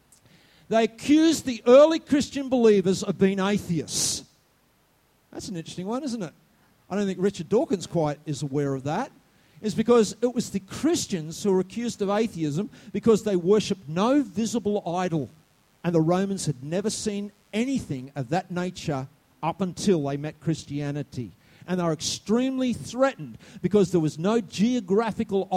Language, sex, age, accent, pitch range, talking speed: English, male, 50-69, Australian, 175-245 Hz, 155 wpm